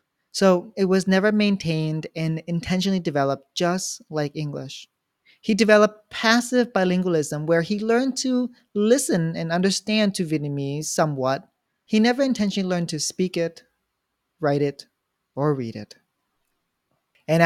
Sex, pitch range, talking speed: male, 150-195 Hz, 130 wpm